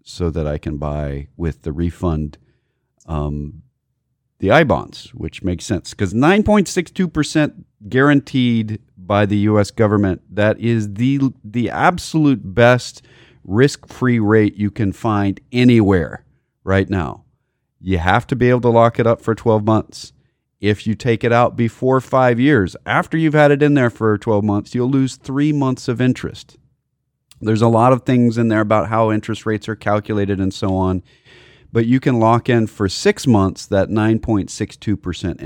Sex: male